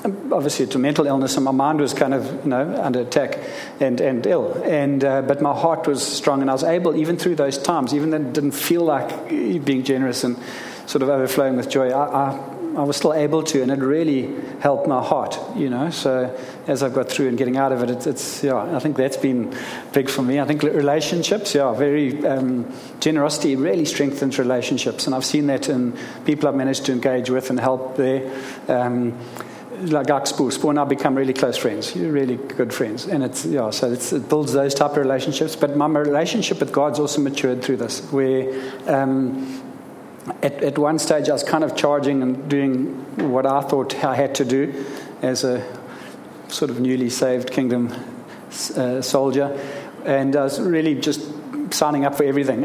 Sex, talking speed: male, 200 wpm